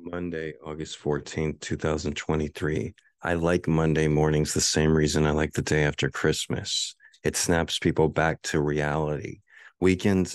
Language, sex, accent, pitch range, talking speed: English, male, American, 80-95 Hz, 140 wpm